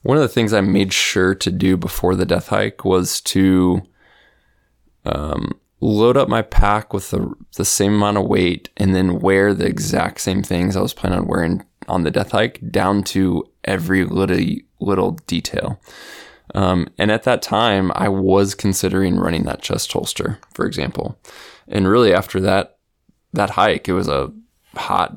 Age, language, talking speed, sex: 20-39, English, 175 wpm, male